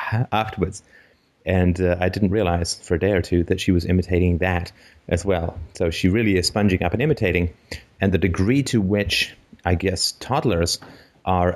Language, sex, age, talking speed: English, male, 30-49, 180 wpm